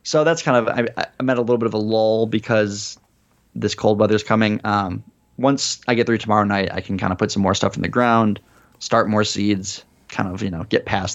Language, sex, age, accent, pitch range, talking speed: English, male, 20-39, American, 100-115 Hz, 235 wpm